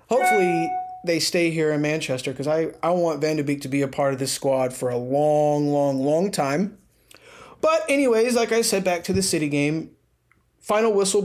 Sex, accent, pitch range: male, American, 145-180 Hz